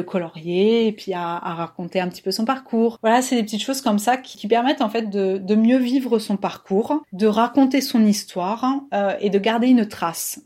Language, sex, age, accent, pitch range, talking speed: French, female, 30-49, French, 195-235 Hz, 225 wpm